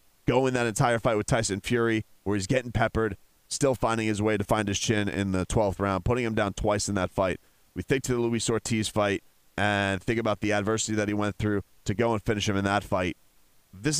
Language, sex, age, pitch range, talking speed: English, male, 30-49, 105-130 Hz, 240 wpm